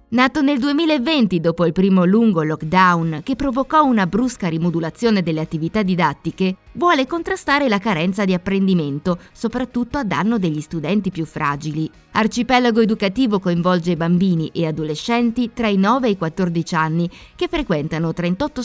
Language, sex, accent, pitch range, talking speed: Italian, female, native, 170-240 Hz, 145 wpm